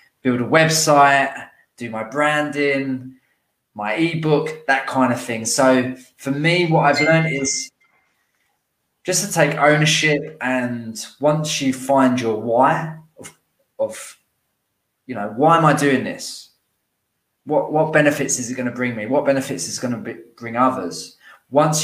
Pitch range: 125-150 Hz